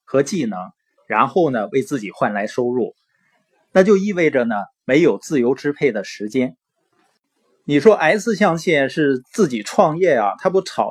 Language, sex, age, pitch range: Chinese, male, 20-39, 135-200 Hz